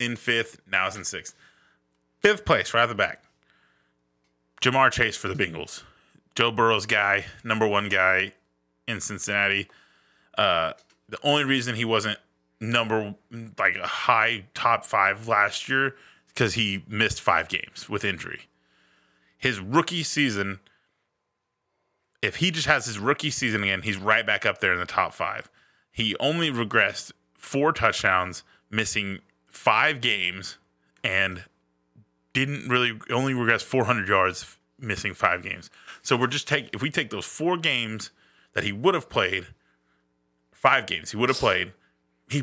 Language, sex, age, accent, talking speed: English, male, 20-39, American, 150 wpm